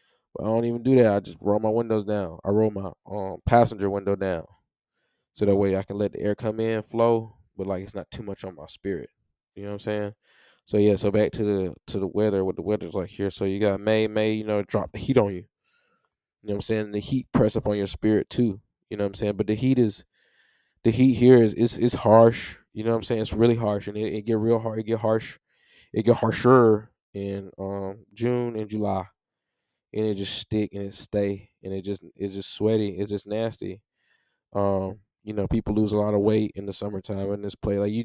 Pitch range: 100-110 Hz